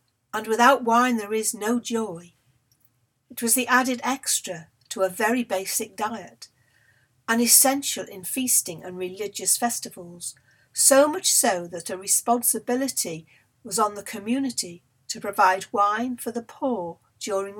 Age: 60-79